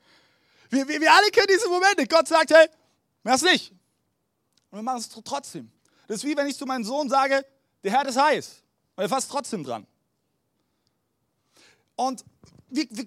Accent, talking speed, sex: German, 175 wpm, male